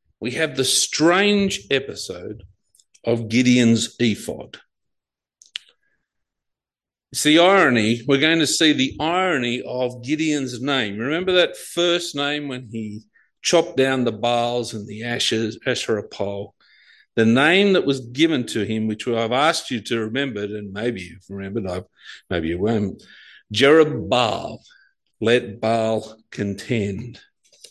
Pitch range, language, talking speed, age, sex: 115-160 Hz, English, 125 wpm, 50-69, male